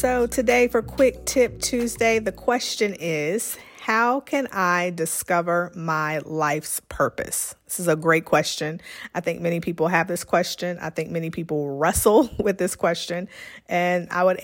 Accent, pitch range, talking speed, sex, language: American, 160-190 Hz, 160 wpm, female, English